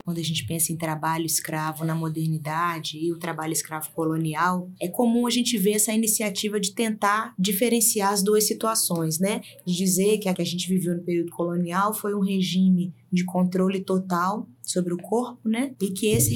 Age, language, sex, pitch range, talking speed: 20-39, Portuguese, female, 180-215 Hz, 190 wpm